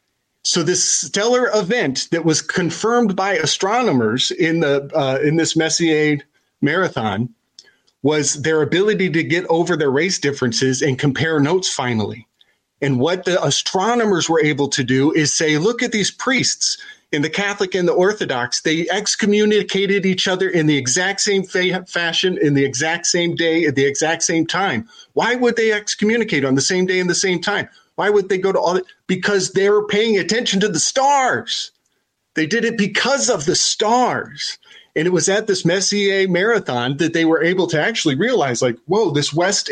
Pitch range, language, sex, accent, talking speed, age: 150-200 Hz, English, male, American, 185 wpm, 40-59